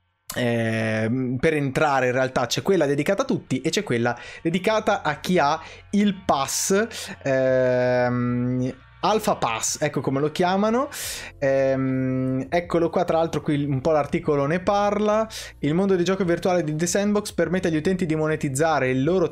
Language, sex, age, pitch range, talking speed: Italian, male, 20-39, 130-180 Hz, 160 wpm